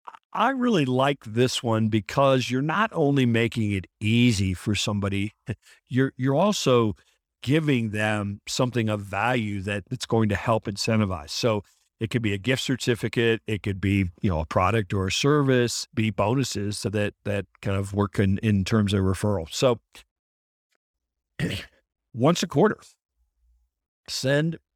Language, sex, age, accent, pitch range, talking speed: English, male, 50-69, American, 100-130 Hz, 155 wpm